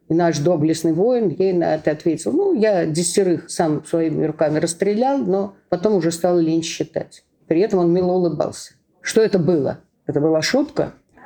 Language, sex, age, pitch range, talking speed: Russian, female, 50-69, 165-195 Hz, 170 wpm